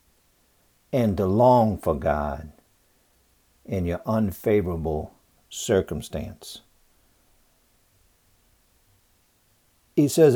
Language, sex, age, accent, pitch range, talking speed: English, male, 60-79, American, 95-145 Hz, 65 wpm